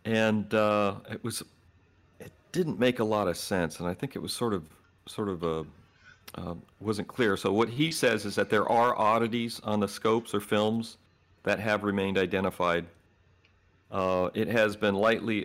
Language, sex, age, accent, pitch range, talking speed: English, male, 40-59, American, 90-105 Hz, 180 wpm